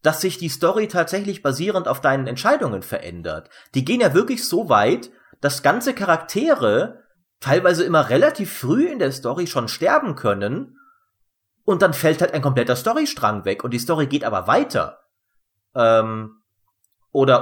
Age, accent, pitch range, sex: 30-49, German, 120-195 Hz, male